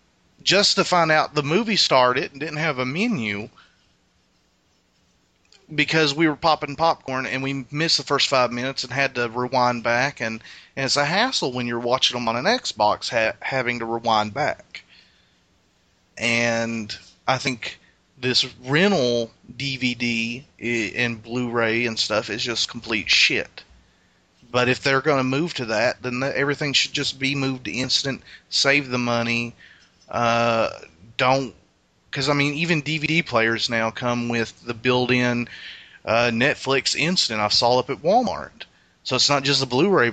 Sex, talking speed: male, 155 wpm